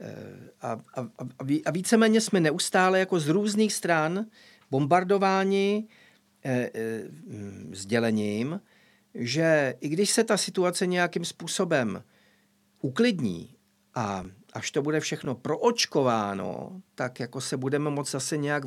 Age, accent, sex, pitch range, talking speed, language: 50-69, native, male, 125-180 Hz, 115 wpm, Czech